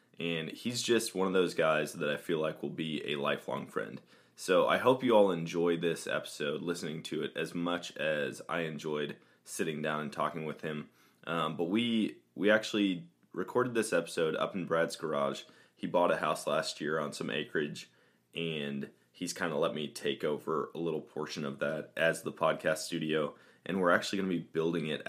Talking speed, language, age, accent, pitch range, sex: 200 wpm, English, 20-39, American, 75-85 Hz, male